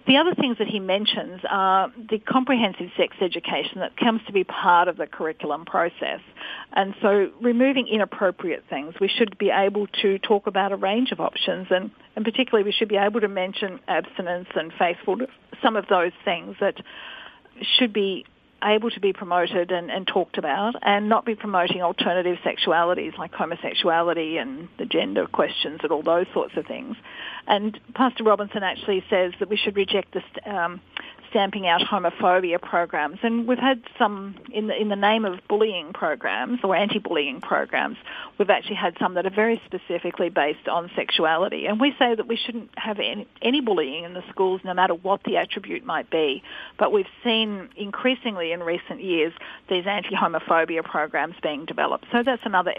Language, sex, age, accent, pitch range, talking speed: English, female, 50-69, Australian, 180-230 Hz, 175 wpm